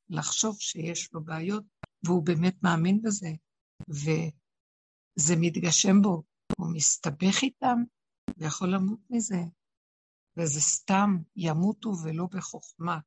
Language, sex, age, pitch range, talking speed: Hebrew, female, 60-79, 170-210 Hz, 105 wpm